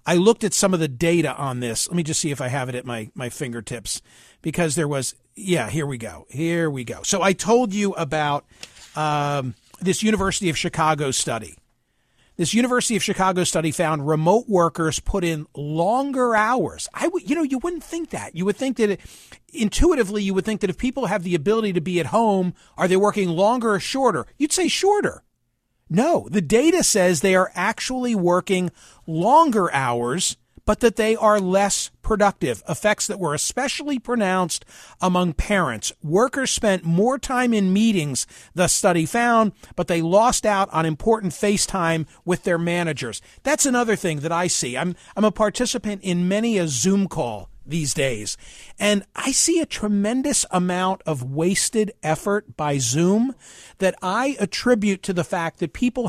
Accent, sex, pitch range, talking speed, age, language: American, male, 160-215 Hz, 180 wpm, 40-59, English